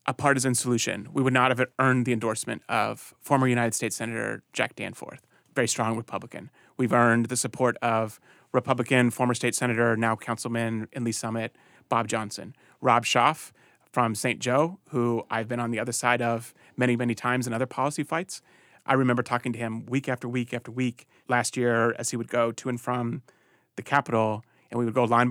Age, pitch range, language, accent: 30-49, 115-130 Hz, English, American